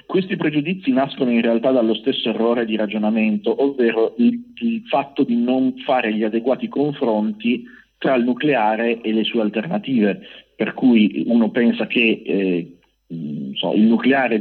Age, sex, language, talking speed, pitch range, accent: 40-59, male, Italian, 155 wpm, 105-125 Hz, native